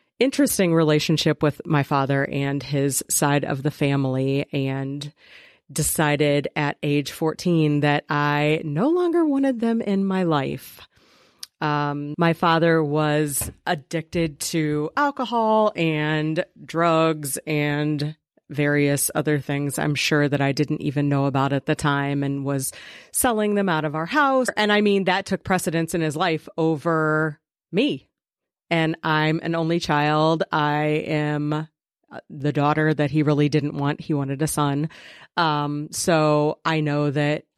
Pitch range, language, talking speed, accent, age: 145-165 Hz, English, 145 wpm, American, 40-59